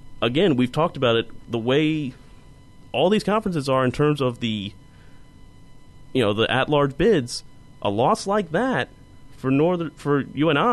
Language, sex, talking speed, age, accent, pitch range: English, male, 160 wpm, 30-49, American, 120-155 Hz